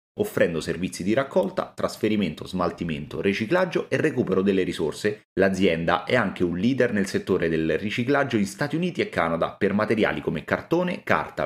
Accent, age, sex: native, 30-49, male